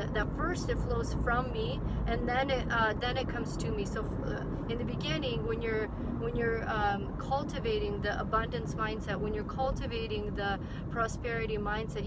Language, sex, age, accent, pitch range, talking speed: English, female, 30-49, American, 200-230 Hz, 175 wpm